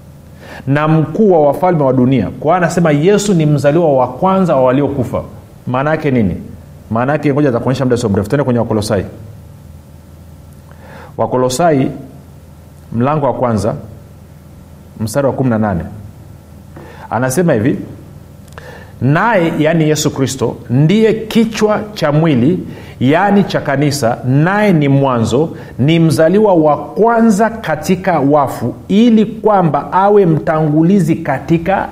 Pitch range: 120-185 Hz